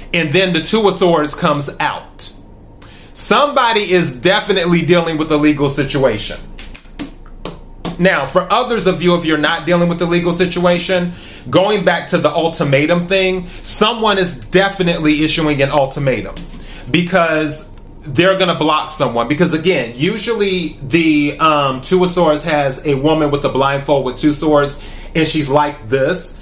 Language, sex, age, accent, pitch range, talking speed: English, male, 30-49, American, 145-180 Hz, 155 wpm